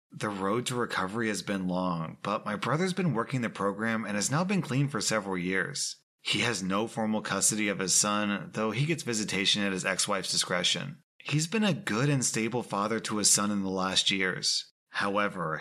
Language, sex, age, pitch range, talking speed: English, male, 30-49, 100-135 Hz, 205 wpm